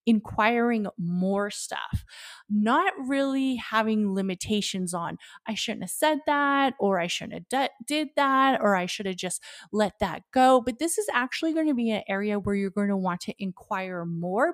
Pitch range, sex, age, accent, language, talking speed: 195-265 Hz, female, 30-49, American, English, 180 wpm